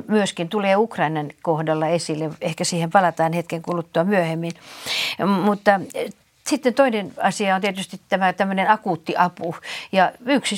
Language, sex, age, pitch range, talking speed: Finnish, female, 60-79, 165-205 Hz, 130 wpm